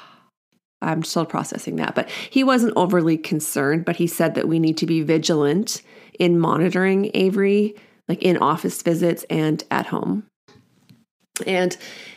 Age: 30-49